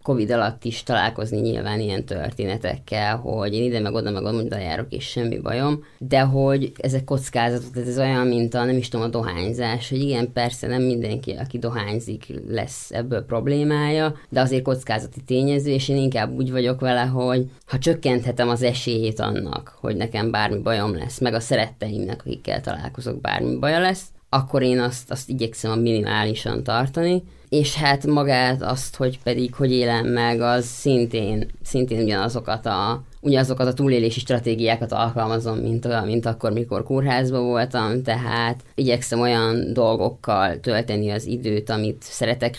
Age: 20-39